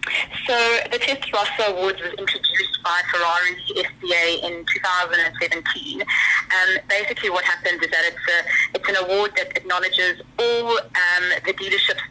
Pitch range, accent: 175-195 Hz, British